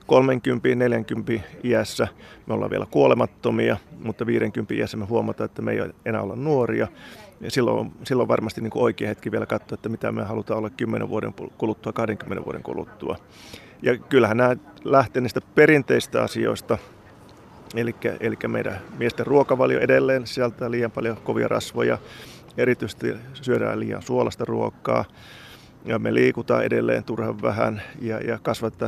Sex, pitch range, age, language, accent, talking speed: male, 110-120 Hz, 30-49, Finnish, native, 140 wpm